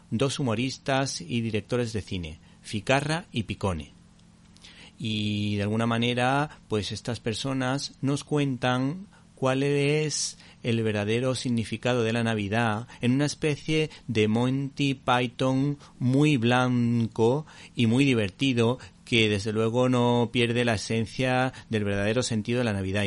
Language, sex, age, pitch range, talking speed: Spanish, male, 40-59, 105-130 Hz, 130 wpm